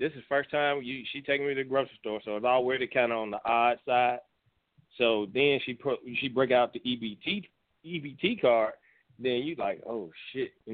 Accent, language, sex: American, English, male